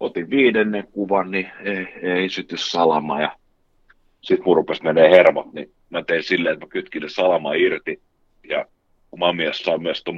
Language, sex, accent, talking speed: Finnish, male, native, 145 wpm